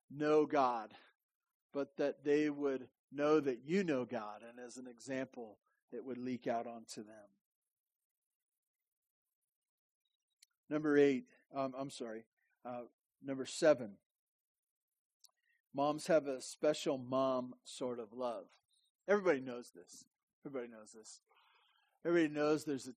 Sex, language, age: male, English, 40-59